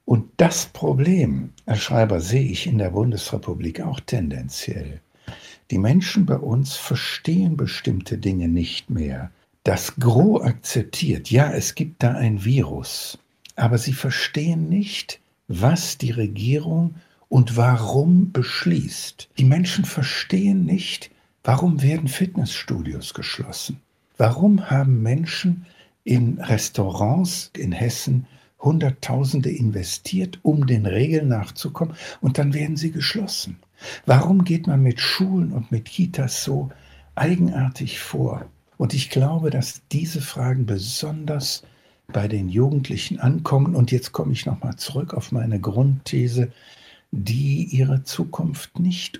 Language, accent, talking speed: German, German, 125 wpm